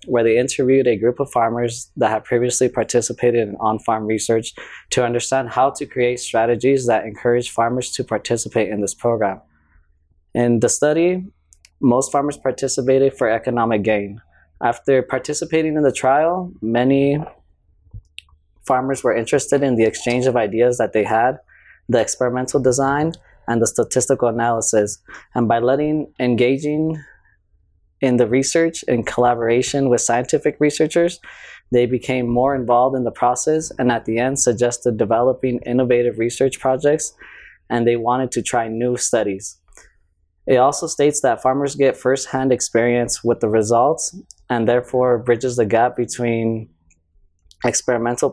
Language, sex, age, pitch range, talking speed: English, male, 20-39, 115-130 Hz, 140 wpm